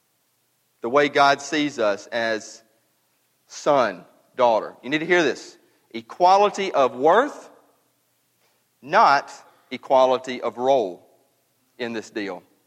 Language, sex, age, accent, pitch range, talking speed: English, male, 40-59, American, 130-175 Hz, 110 wpm